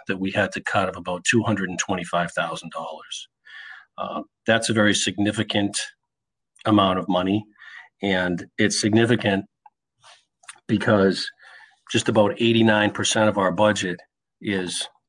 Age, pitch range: 40-59, 90-105 Hz